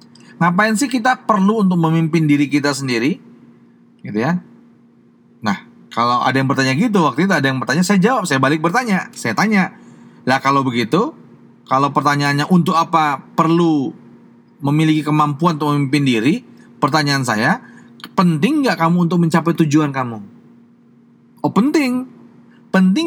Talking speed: 140 wpm